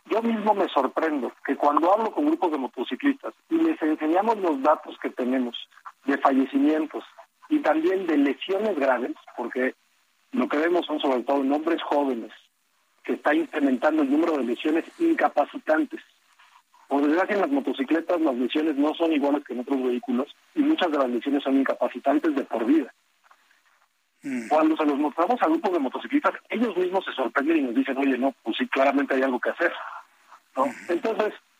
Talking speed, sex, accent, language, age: 175 wpm, male, Mexican, Spanish, 40-59